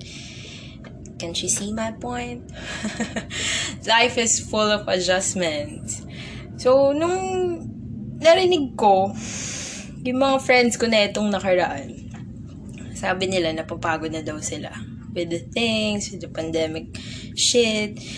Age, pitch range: 20-39, 155-240 Hz